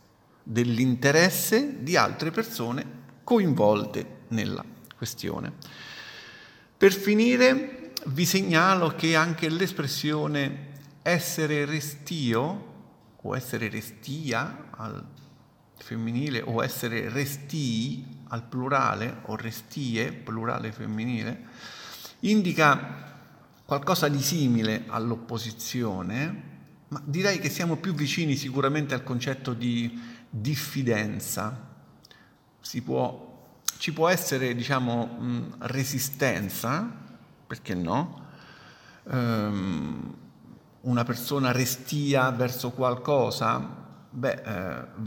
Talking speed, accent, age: 85 wpm, native, 50-69